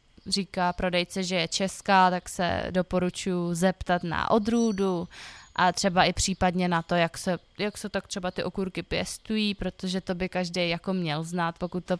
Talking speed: 170 wpm